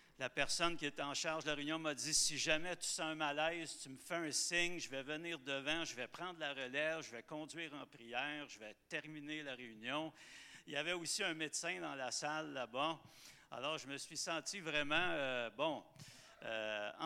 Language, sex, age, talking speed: French, male, 60-79, 210 wpm